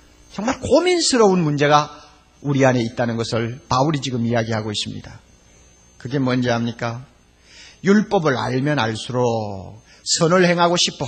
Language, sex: Korean, male